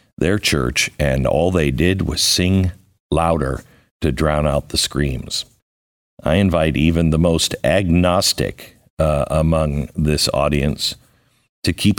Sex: male